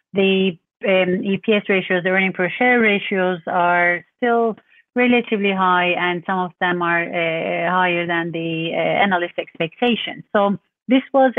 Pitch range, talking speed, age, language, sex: 170-195 Hz, 150 wpm, 30-49, English, female